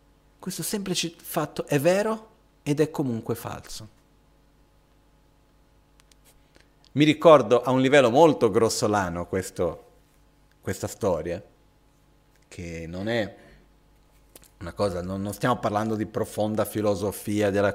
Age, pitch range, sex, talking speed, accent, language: 40-59, 110-160 Hz, male, 105 wpm, native, Italian